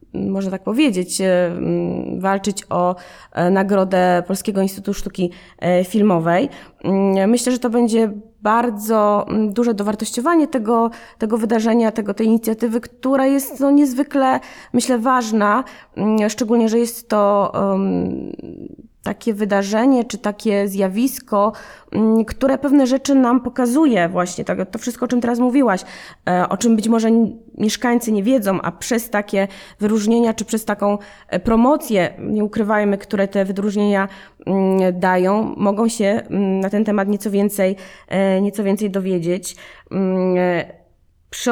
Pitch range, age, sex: 185-230 Hz, 20-39, female